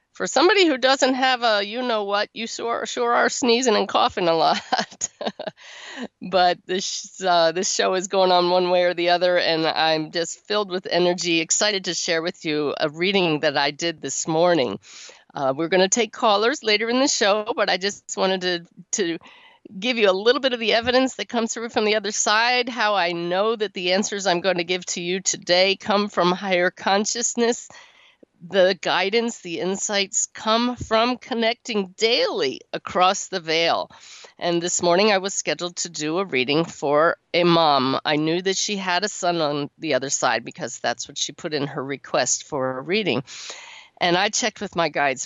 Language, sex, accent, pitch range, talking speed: English, female, American, 165-225 Hz, 200 wpm